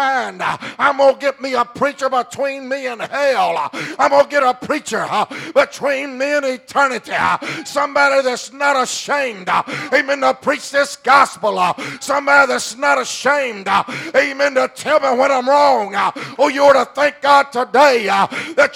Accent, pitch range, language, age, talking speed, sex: American, 245-275 Hz, English, 50-69, 175 wpm, male